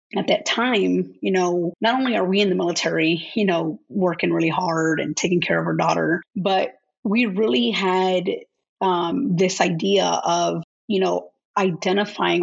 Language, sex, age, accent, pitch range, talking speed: English, female, 30-49, American, 170-205 Hz, 165 wpm